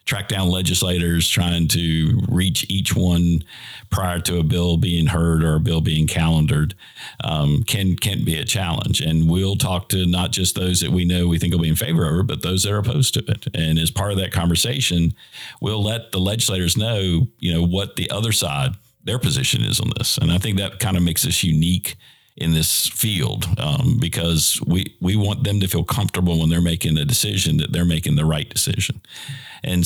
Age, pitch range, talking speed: 50-69, 85-105 Hz, 210 wpm